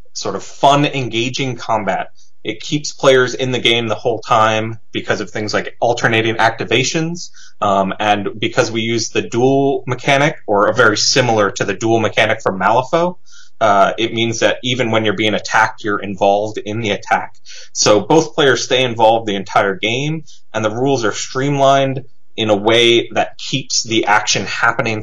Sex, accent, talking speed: male, American, 175 wpm